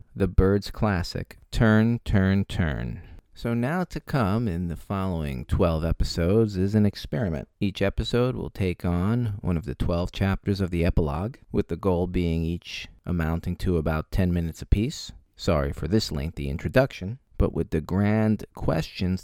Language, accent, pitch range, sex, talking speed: English, American, 90-110 Hz, male, 160 wpm